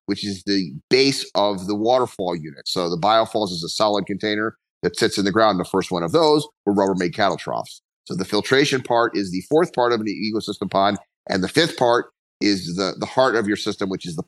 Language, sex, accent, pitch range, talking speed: English, male, American, 100-120 Hz, 230 wpm